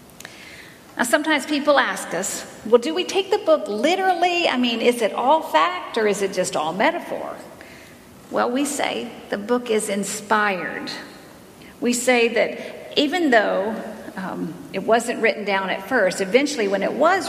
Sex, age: female, 50-69